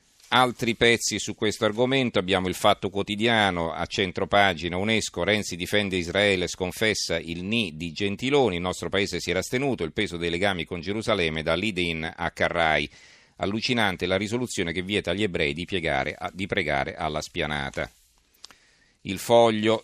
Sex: male